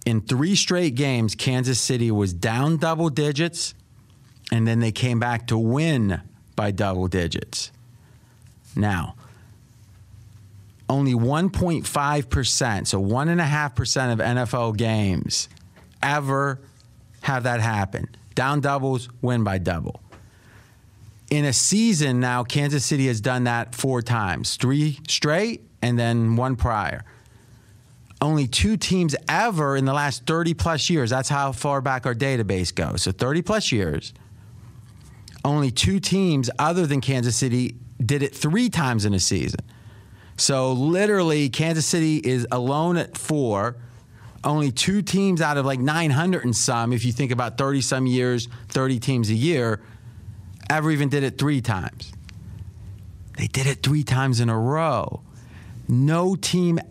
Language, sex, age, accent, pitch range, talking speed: English, male, 40-59, American, 110-145 Hz, 135 wpm